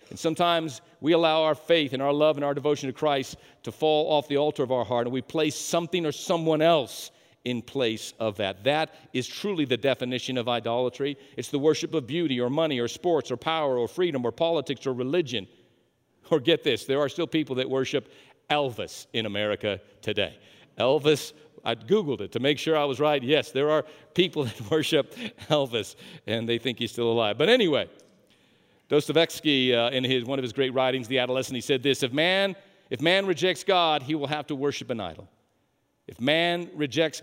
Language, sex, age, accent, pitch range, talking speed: English, male, 50-69, American, 125-165 Hz, 200 wpm